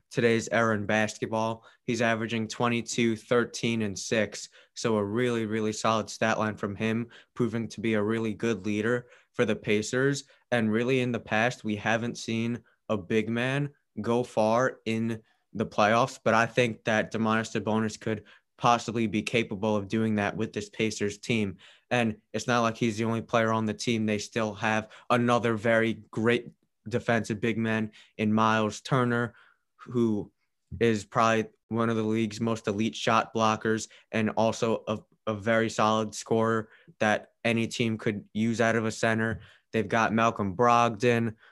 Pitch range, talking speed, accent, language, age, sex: 110-115 Hz, 165 wpm, American, English, 20-39, male